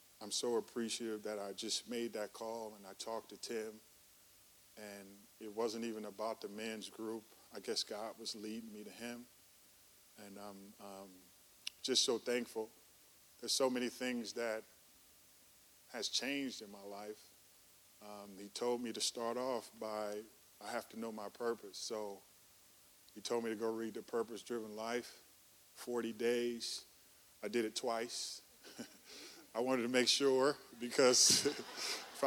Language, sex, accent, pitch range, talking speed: English, male, American, 105-120 Hz, 155 wpm